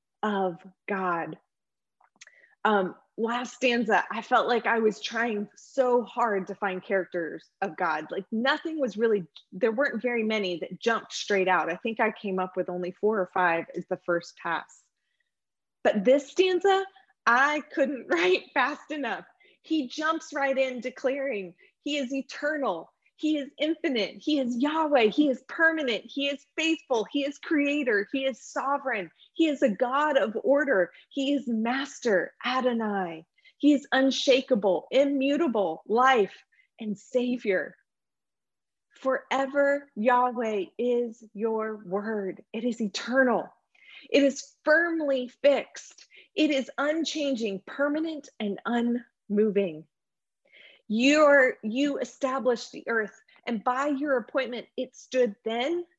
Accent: American